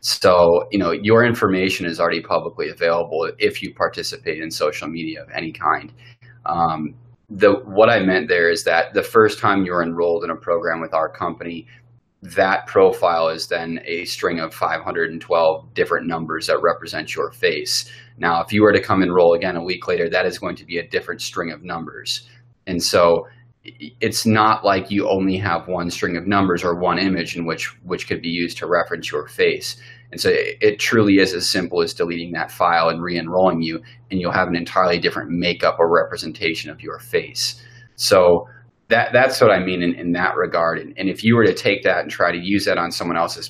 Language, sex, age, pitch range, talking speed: English, male, 30-49, 85-125 Hz, 205 wpm